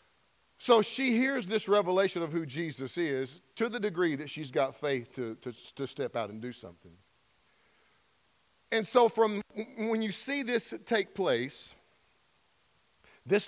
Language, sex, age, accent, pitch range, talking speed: English, male, 50-69, American, 145-220 Hz, 145 wpm